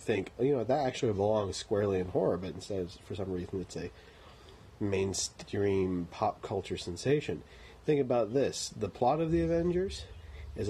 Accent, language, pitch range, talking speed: American, English, 85-105 Hz, 165 wpm